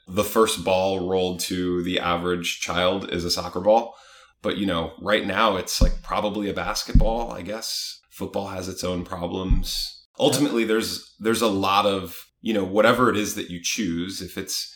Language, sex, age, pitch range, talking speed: English, male, 30-49, 85-95 Hz, 185 wpm